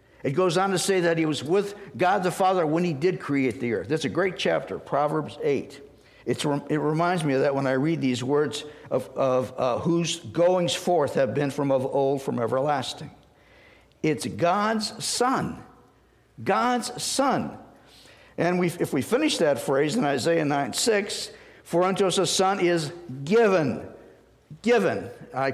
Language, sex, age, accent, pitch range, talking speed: English, male, 60-79, American, 155-200 Hz, 170 wpm